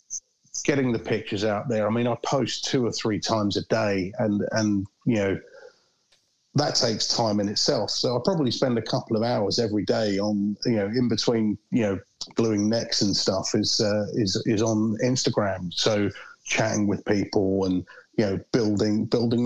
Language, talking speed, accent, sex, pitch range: English, 185 wpm, British, male, 105-125 Hz